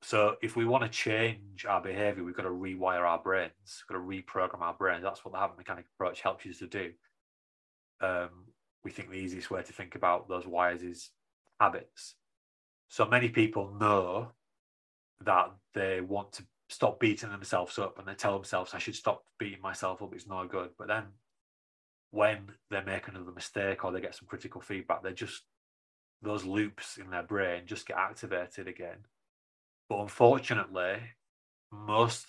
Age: 30-49